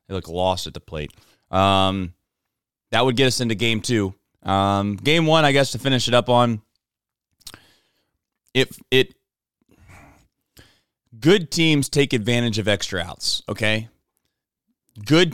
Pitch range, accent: 105-160 Hz, American